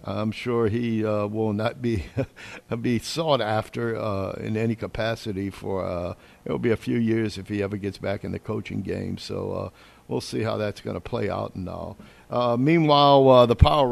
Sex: male